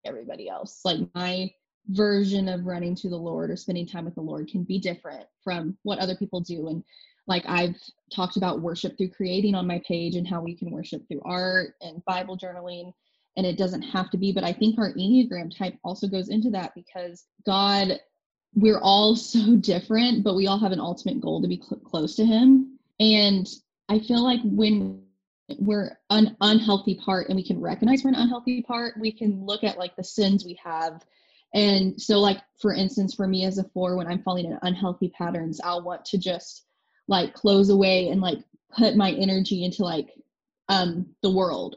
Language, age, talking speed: English, 20-39, 200 wpm